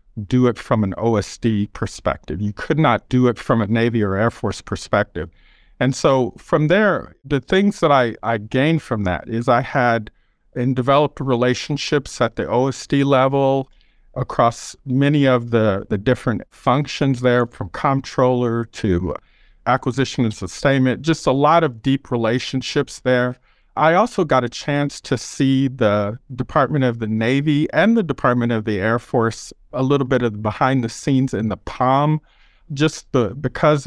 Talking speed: 165 wpm